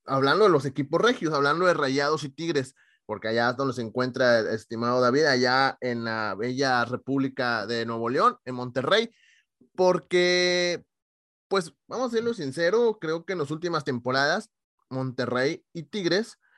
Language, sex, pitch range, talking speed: English, male, 125-180 Hz, 160 wpm